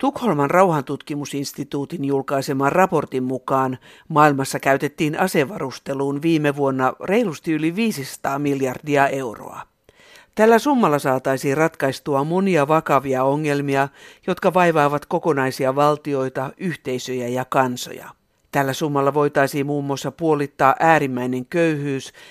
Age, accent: 60-79, native